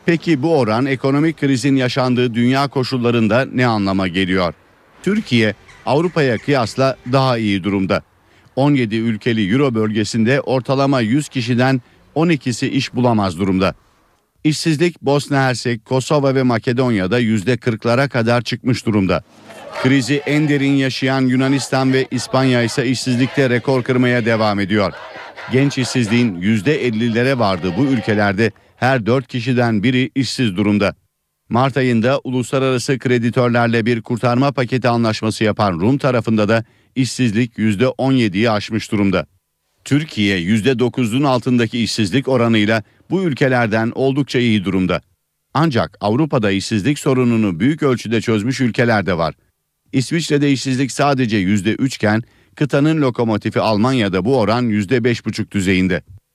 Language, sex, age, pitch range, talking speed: Turkish, male, 50-69, 110-135 Hz, 115 wpm